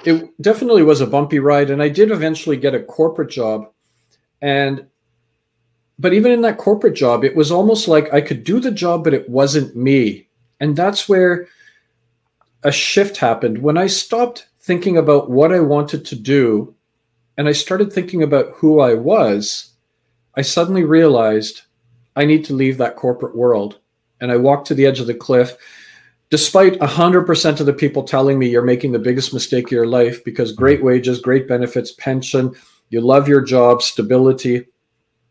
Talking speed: 175 wpm